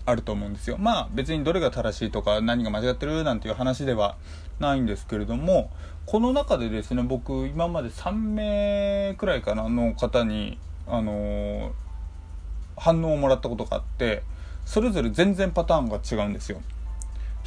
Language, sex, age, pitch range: Japanese, male, 20-39, 100-155 Hz